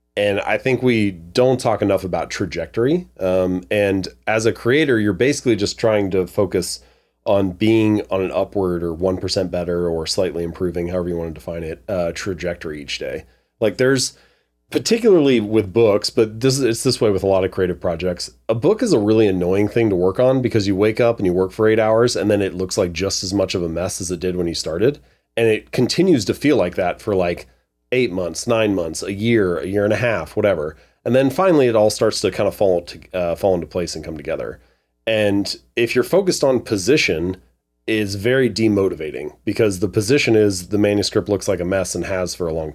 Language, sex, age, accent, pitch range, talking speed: English, male, 30-49, American, 90-110 Hz, 220 wpm